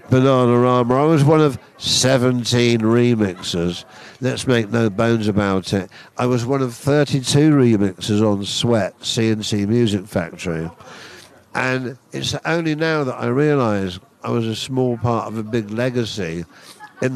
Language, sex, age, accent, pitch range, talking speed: English, male, 50-69, British, 110-130 Hz, 145 wpm